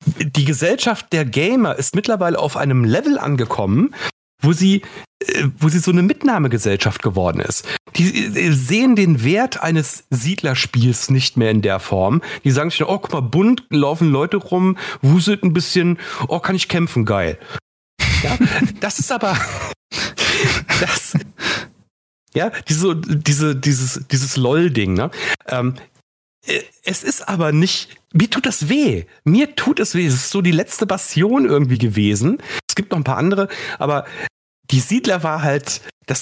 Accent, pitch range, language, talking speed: German, 125-180 Hz, German, 145 wpm